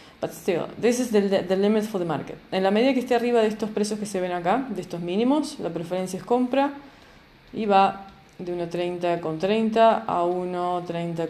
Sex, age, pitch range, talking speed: female, 20-39, 170-215 Hz, 205 wpm